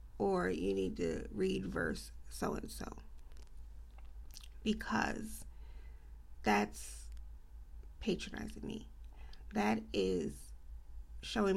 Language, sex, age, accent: English, female, 40-59, American